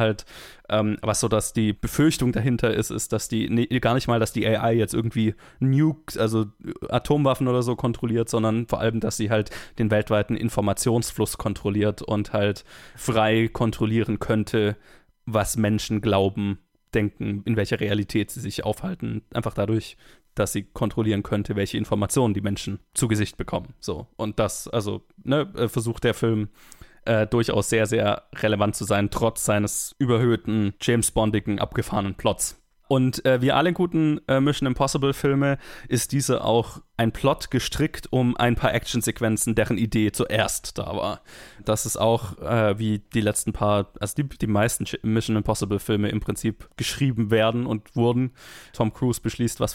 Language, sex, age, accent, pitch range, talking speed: German, male, 20-39, German, 105-125 Hz, 160 wpm